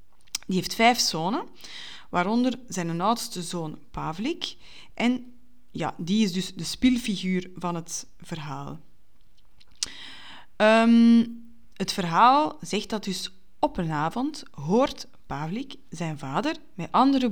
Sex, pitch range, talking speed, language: female, 170-240 Hz, 120 wpm, Dutch